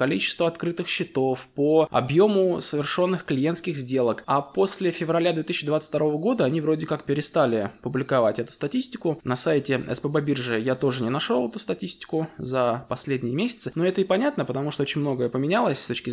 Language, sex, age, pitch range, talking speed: Russian, male, 20-39, 125-165 Hz, 165 wpm